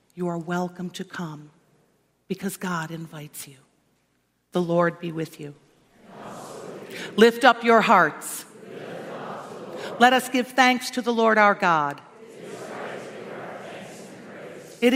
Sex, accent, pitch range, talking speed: female, American, 185-250 Hz, 110 wpm